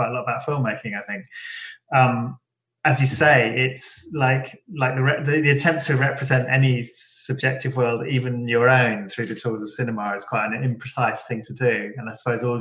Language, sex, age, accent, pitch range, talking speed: English, male, 20-39, British, 110-130 Hz, 190 wpm